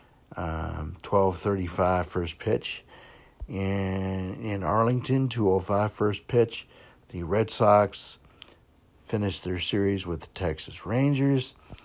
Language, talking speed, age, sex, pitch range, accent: English, 95 wpm, 60-79, male, 80-110 Hz, American